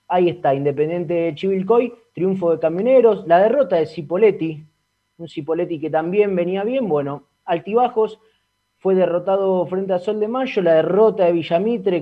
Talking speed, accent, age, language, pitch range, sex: 155 wpm, Argentinian, 20-39, Spanish, 165-210 Hz, male